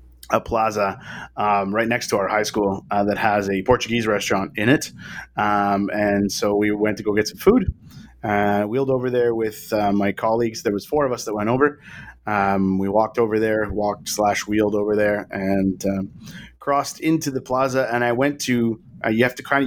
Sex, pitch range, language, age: male, 105-125 Hz, English, 30-49